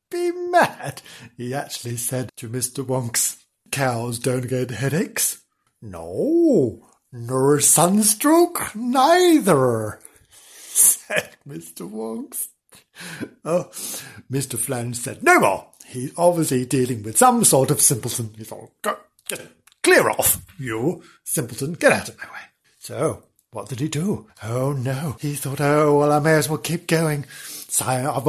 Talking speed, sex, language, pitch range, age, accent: 135 wpm, male, English, 125-160 Hz, 60-79, British